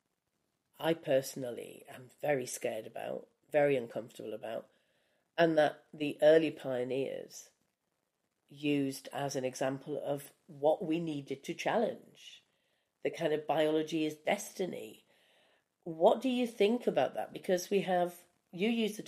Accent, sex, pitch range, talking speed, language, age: British, female, 130-165 Hz, 130 wpm, English, 40-59